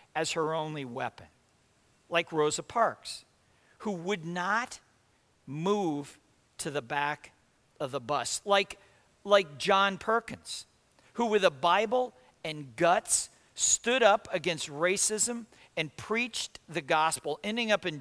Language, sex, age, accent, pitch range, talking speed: English, male, 50-69, American, 155-215 Hz, 125 wpm